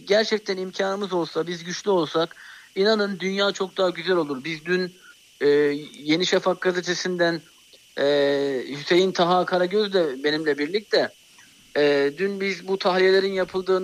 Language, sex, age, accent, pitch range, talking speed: Turkish, male, 50-69, native, 155-200 Hz, 135 wpm